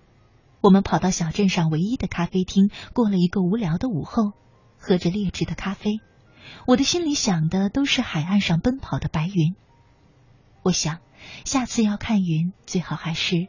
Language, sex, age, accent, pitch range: Chinese, female, 30-49, native, 155-230 Hz